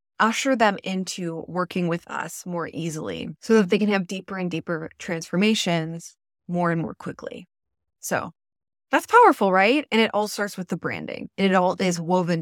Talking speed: 175 wpm